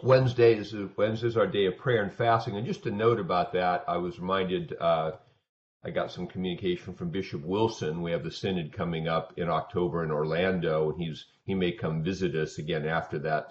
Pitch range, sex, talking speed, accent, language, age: 80-100 Hz, male, 210 wpm, American, English, 50-69